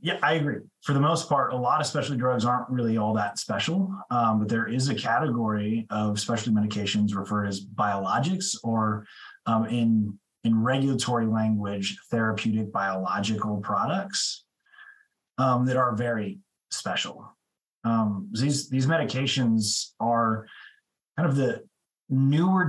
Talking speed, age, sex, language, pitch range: 140 wpm, 30-49, male, English, 105-135 Hz